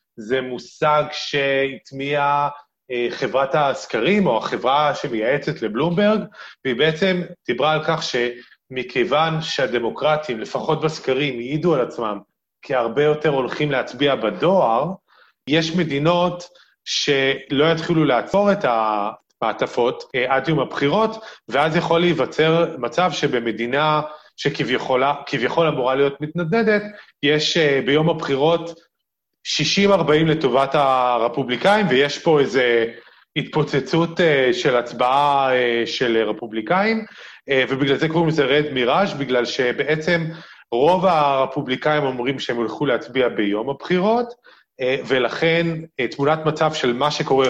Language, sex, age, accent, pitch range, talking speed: Hebrew, male, 30-49, native, 135-165 Hz, 100 wpm